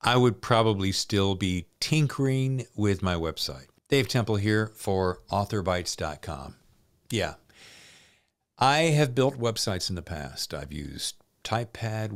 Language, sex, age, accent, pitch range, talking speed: English, male, 50-69, American, 95-125 Hz, 125 wpm